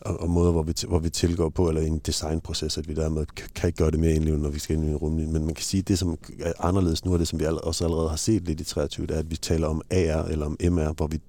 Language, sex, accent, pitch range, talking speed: Danish, male, native, 80-90 Hz, 330 wpm